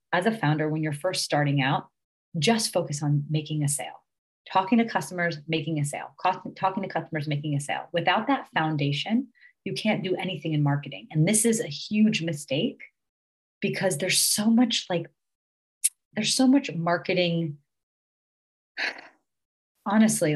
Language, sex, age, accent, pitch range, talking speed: English, female, 30-49, American, 145-195 Hz, 155 wpm